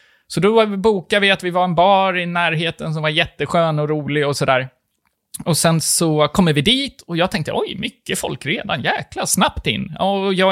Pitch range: 145-205 Hz